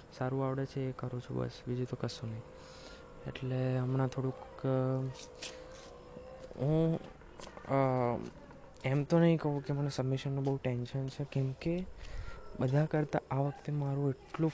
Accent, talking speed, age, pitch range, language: native, 90 wpm, 20-39, 125-145 Hz, Gujarati